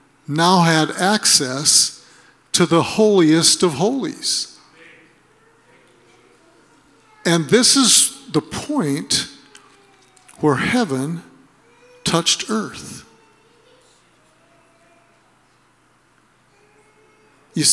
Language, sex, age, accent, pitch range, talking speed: English, male, 50-69, American, 150-225 Hz, 60 wpm